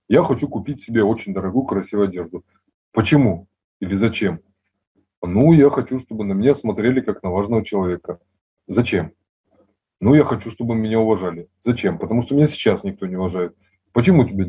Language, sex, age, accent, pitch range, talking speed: Russian, male, 20-39, native, 100-130 Hz, 160 wpm